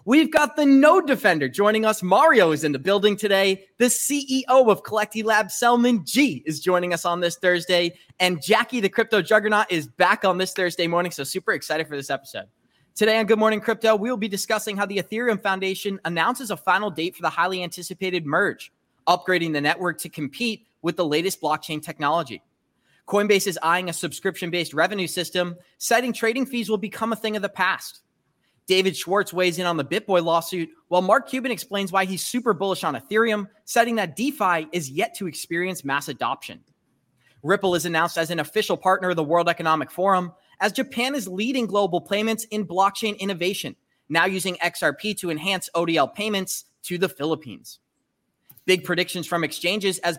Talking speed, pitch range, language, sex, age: 185 wpm, 170-215 Hz, English, male, 20-39